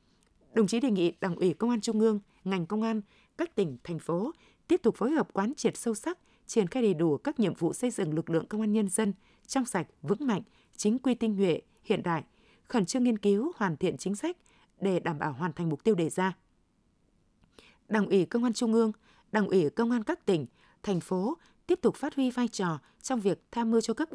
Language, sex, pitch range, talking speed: Vietnamese, female, 185-235 Hz, 230 wpm